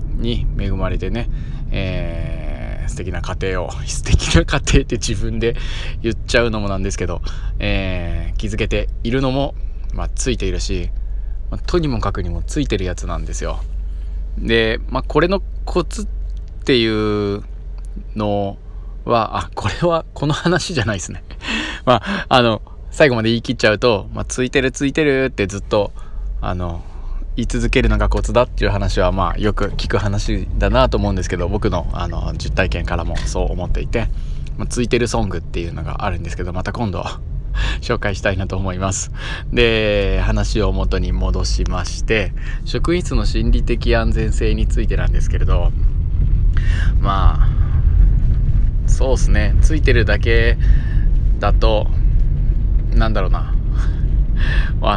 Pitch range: 85-115 Hz